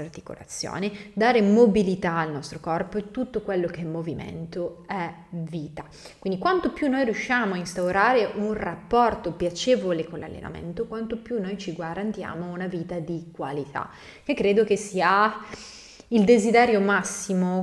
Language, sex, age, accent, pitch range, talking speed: Italian, female, 20-39, native, 170-210 Hz, 145 wpm